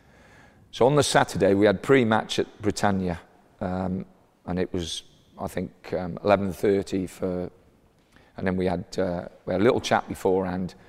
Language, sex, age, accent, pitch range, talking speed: English, male, 40-59, British, 90-105 Hz, 160 wpm